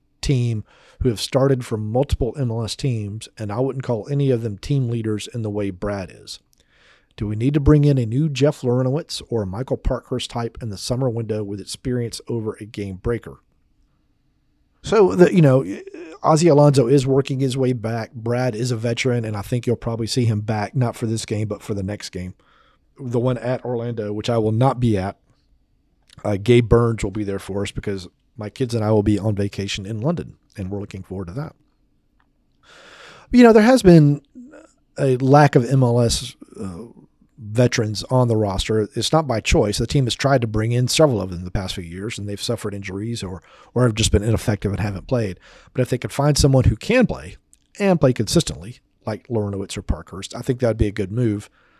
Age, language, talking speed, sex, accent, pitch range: 40-59, English, 215 wpm, male, American, 105-130 Hz